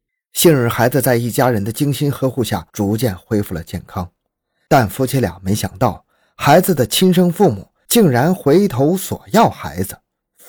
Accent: native